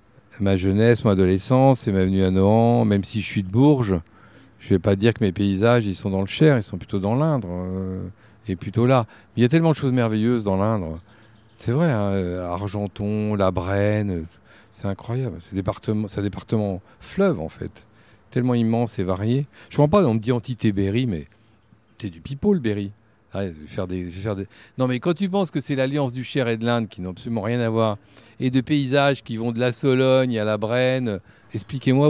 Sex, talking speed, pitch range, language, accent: male, 215 wpm, 100-130 Hz, French, French